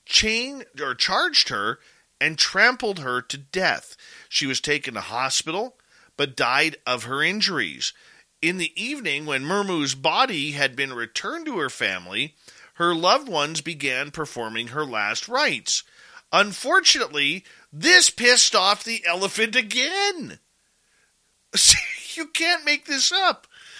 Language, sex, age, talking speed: English, male, 40-59, 130 wpm